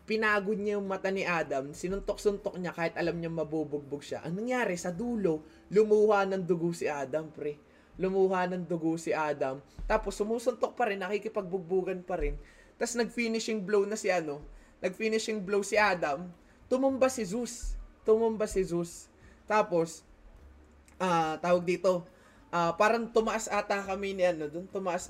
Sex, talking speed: male, 160 wpm